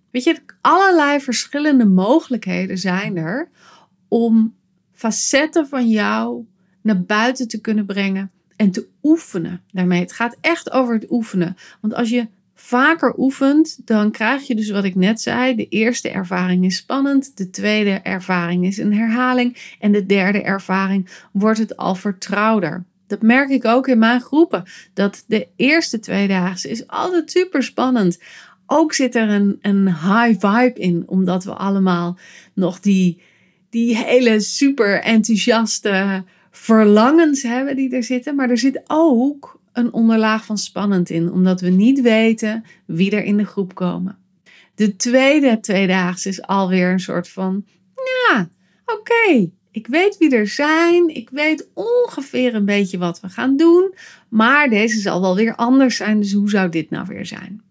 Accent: Dutch